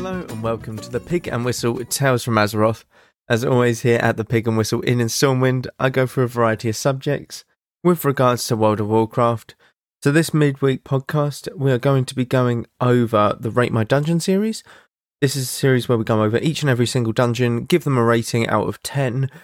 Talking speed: 215 wpm